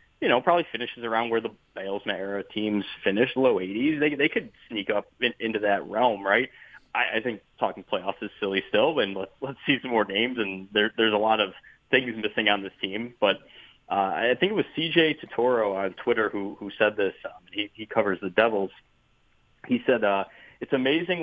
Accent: American